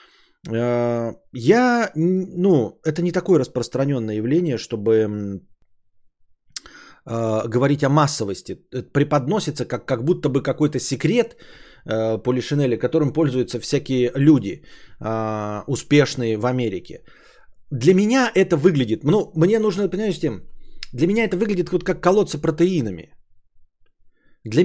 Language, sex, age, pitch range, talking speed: Bulgarian, male, 20-39, 120-185 Hz, 115 wpm